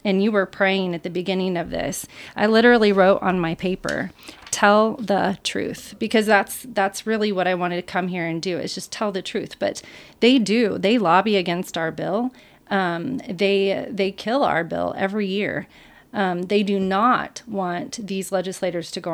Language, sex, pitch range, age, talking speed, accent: English, female, 185-230 Hz, 30-49, 190 wpm, American